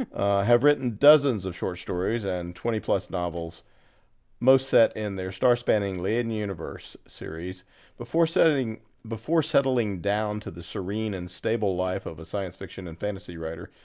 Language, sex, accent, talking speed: English, male, American, 150 wpm